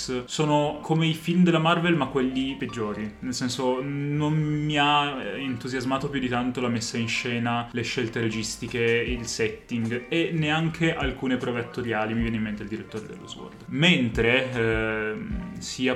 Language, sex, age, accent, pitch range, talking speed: Italian, male, 20-39, native, 115-150 Hz, 160 wpm